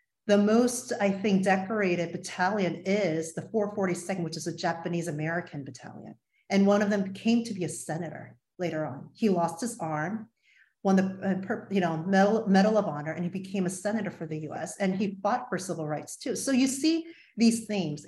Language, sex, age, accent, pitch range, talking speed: English, female, 30-49, American, 170-220 Hz, 190 wpm